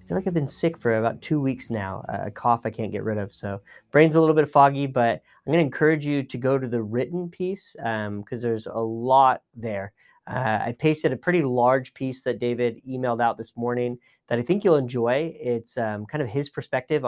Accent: American